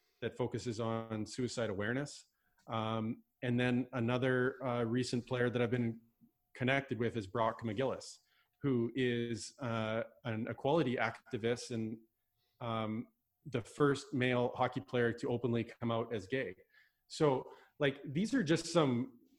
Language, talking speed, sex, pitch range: English, 140 wpm, male, 115-140 Hz